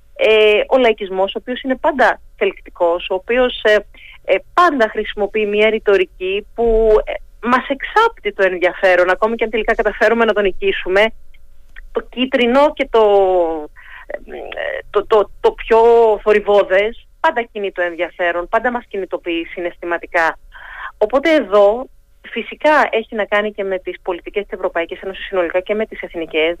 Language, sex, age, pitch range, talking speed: Greek, female, 30-49, 190-245 Hz, 150 wpm